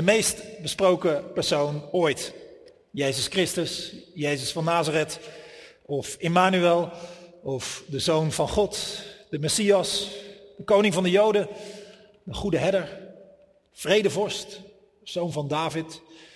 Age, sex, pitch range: 40-59, male, 160-200 Hz